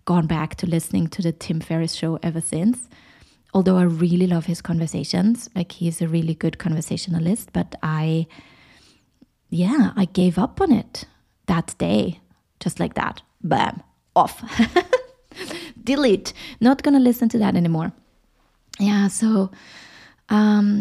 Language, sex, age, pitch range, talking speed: English, female, 20-39, 170-210 Hz, 140 wpm